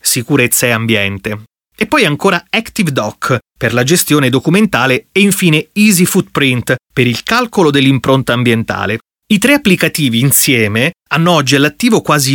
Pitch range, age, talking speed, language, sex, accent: 125-175 Hz, 30-49, 140 wpm, Italian, male, native